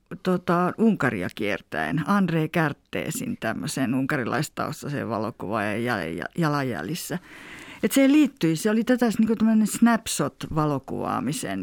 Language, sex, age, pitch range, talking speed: Finnish, female, 50-69, 140-205 Hz, 95 wpm